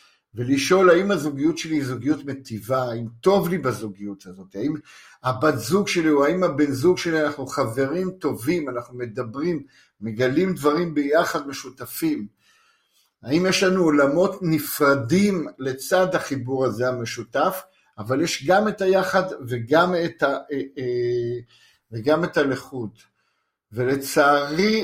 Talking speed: 120 wpm